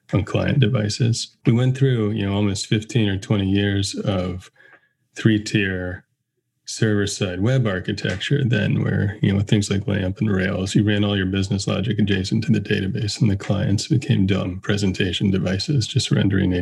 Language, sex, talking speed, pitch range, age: English, male, 165 wpm, 100-110 Hz, 30-49